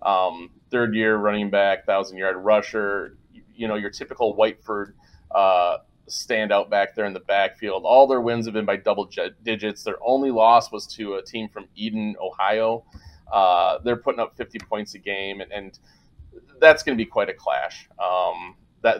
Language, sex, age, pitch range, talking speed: English, male, 30-49, 100-120 Hz, 175 wpm